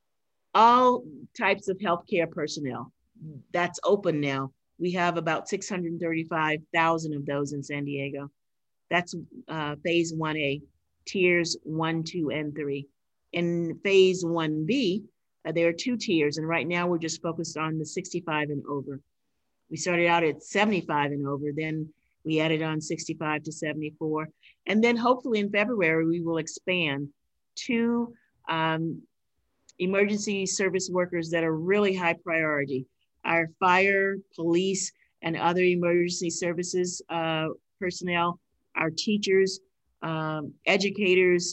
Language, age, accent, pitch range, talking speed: English, 50-69, American, 155-185 Hz, 130 wpm